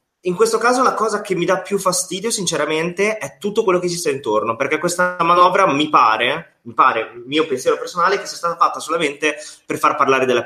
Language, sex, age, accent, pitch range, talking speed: Italian, male, 20-39, native, 130-175 Hz, 225 wpm